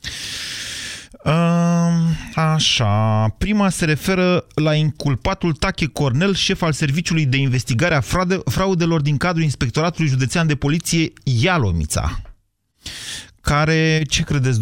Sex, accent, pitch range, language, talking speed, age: male, native, 115-170 Hz, Romanian, 105 wpm, 30-49